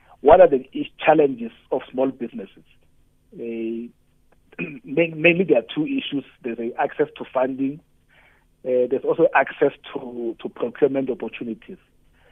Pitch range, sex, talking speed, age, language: 120-155 Hz, male, 125 wpm, 40-59, English